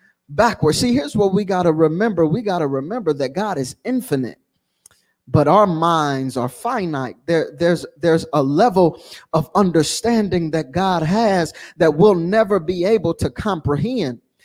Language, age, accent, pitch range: English, 20-39, American, 160-210 Hz